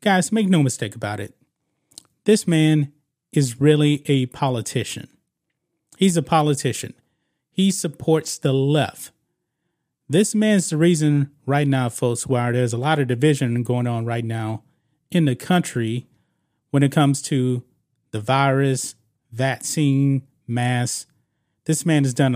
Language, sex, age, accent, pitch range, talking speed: English, male, 30-49, American, 125-160 Hz, 135 wpm